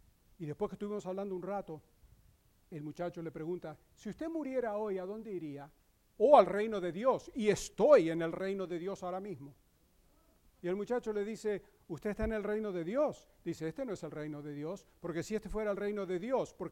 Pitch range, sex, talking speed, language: 170-220 Hz, male, 225 wpm, English